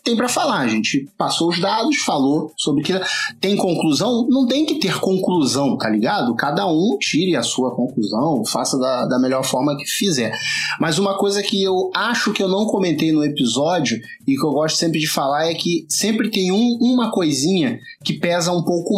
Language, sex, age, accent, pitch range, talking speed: Portuguese, male, 30-49, Brazilian, 155-200 Hz, 195 wpm